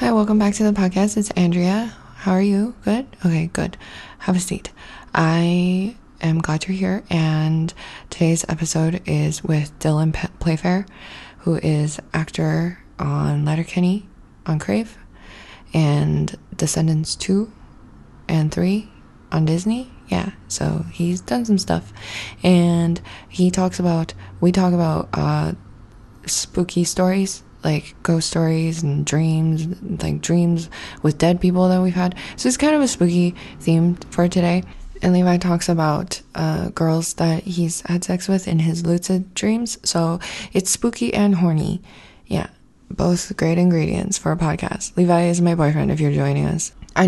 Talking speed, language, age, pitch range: 150 wpm, English, 20-39, 155-185 Hz